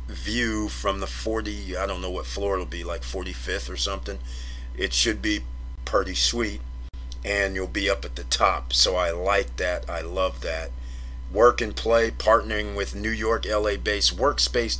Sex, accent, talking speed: male, American, 180 wpm